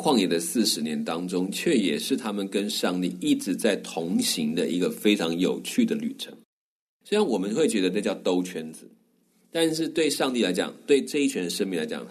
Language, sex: Chinese, male